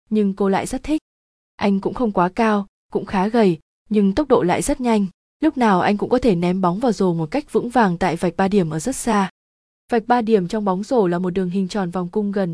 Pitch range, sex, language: 185-230 Hz, female, Vietnamese